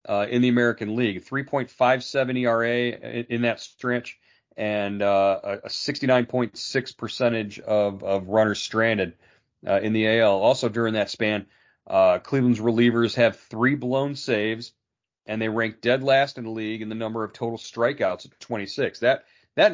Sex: male